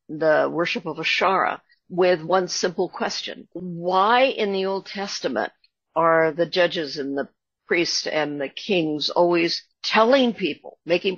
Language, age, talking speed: English, 60-79, 140 wpm